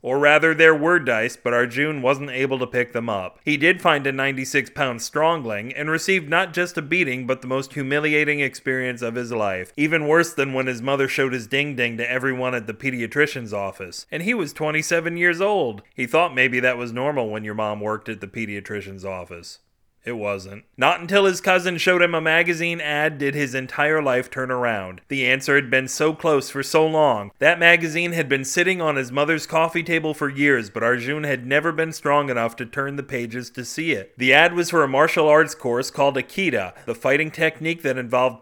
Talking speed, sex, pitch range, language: 210 wpm, male, 120-155 Hz, English